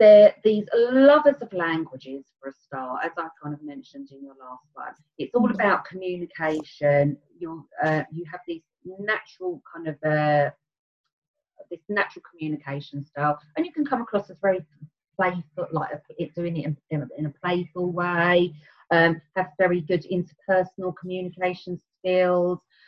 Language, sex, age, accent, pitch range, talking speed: English, female, 30-49, British, 155-210 Hz, 150 wpm